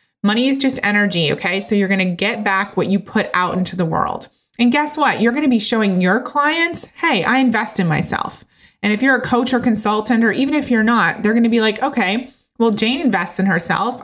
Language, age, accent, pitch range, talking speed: English, 20-39, American, 190-250 Hz, 240 wpm